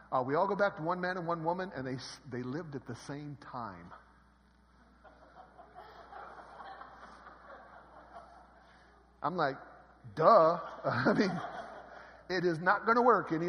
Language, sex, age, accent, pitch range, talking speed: English, male, 50-69, American, 145-210 Hz, 140 wpm